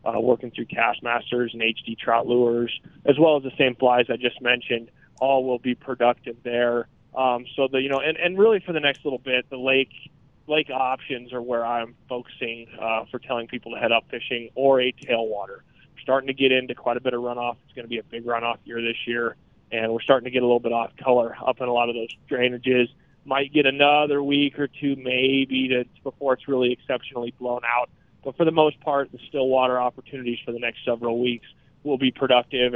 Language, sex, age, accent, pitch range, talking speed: English, male, 20-39, American, 120-135 Hz, 220 wpm